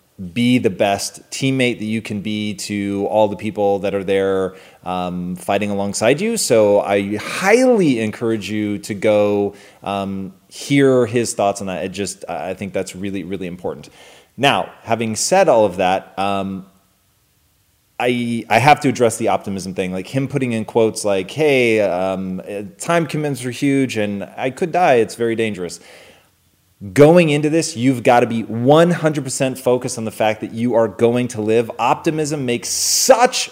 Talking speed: 170 wpm